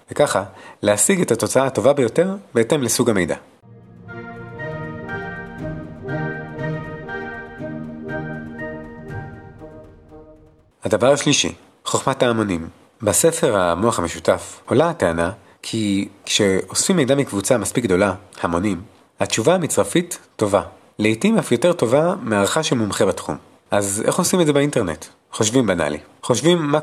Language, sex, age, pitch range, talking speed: Hebrew, male, 30-49, 85-145 Hz, 105 wpm